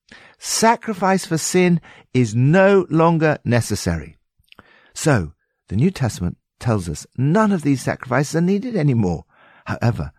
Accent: British